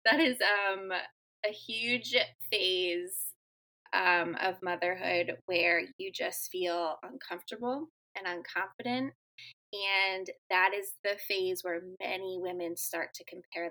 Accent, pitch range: American, 180-235 Hz